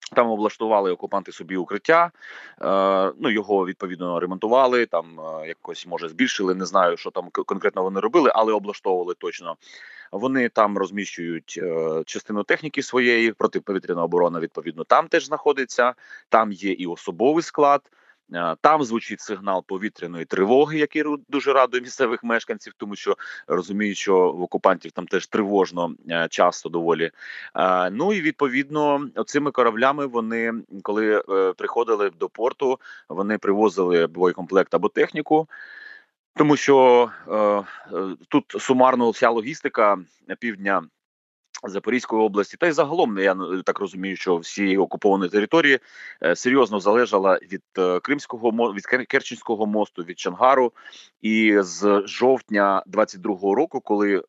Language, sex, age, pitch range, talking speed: Ukrainian, male, 30-49, 95-130 Hz, 130 wpm